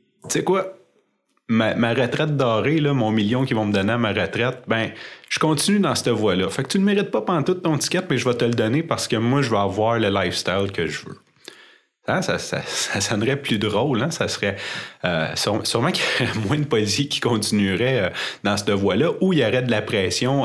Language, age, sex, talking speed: French, 30-49, male, 245 wpm